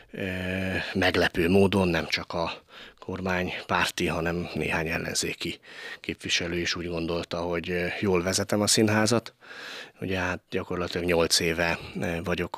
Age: 30-49